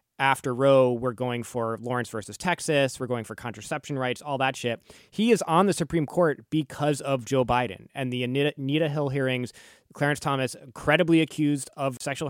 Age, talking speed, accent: 20-39, 180 wpm, American